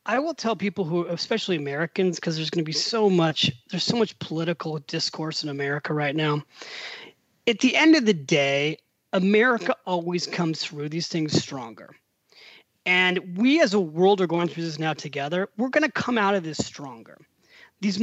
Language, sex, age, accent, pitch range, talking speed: English, male, 30-49, American, 160-220 Hz, 185 wpm